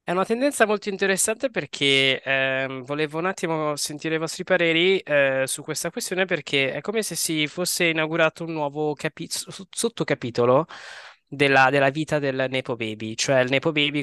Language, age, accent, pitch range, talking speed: Italian, 20-39, native, 125-155 Hz, 165 wpm